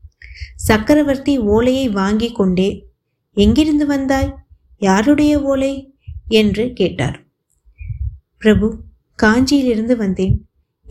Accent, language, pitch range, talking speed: native, Tamil, 205-260 Hz, 70 wpm